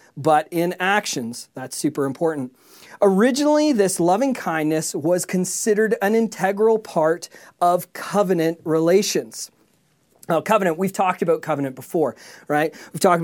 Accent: American